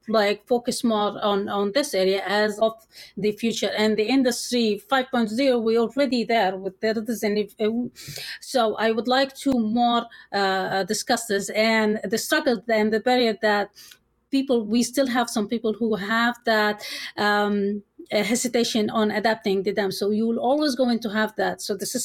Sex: female